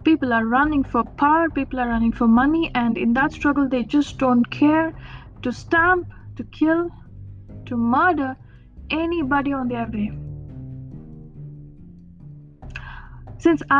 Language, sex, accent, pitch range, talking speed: English, female, Indian, 230-295 Hz, 125 wpm